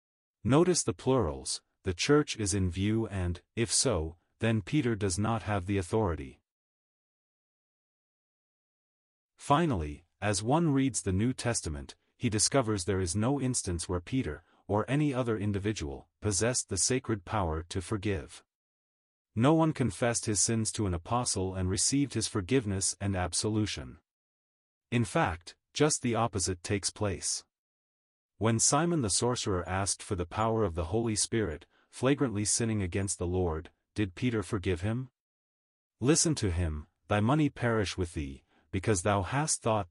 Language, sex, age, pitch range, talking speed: English, male, 40-59, 90-120 Hz, 145 wpm